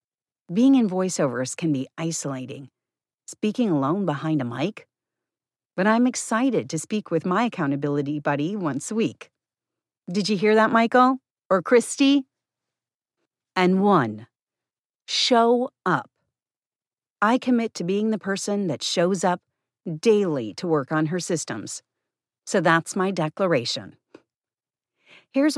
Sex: female